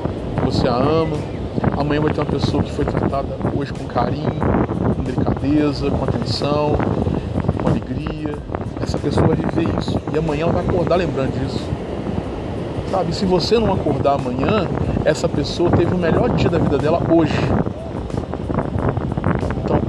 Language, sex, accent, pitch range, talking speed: Portuguese, male, Brazilian, 130-145 Hz, 145 wpm